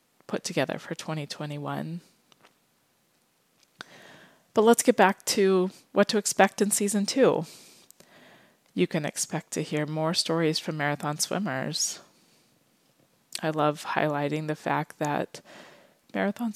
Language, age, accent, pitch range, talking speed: English, 20-39, American, 155-195 Hz, 115 wpm